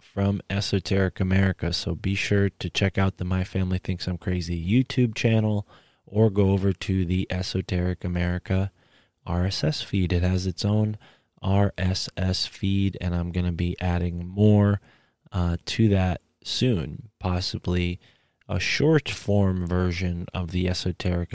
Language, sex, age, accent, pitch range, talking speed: English, male, 20-39, American, 90-105 Hz, 140 wpm